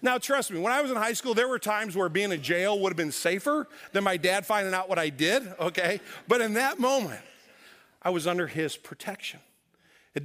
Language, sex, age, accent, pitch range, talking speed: English, male, 50-69, American, 165-205 Hz, 230 wpm